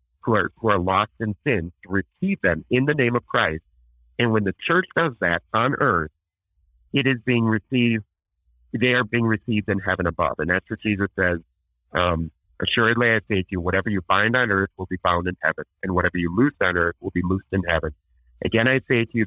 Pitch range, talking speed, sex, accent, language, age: 90-120 Hz, 220 wpm, male, American, English, 50-69